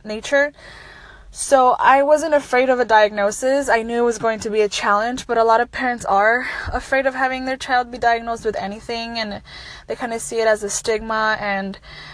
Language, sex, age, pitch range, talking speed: English, female, 10-29, 190-230 Hz, 210 wpm